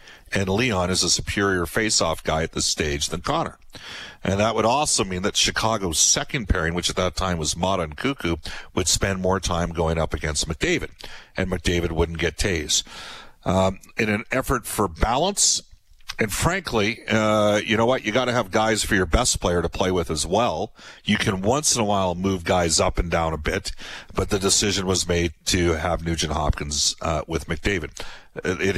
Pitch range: 85-105 Hz